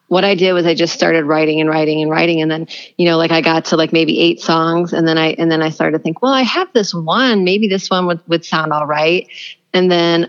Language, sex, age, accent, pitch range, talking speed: English, female, 30-49, American, 160-190 Hz, 280 wpm